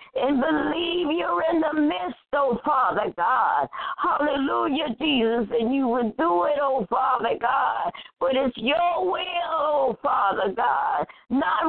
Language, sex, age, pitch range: English, female, 60-79, 260-320 Hz